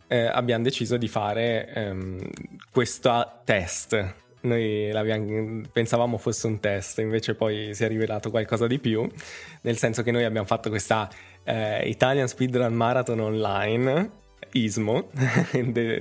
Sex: male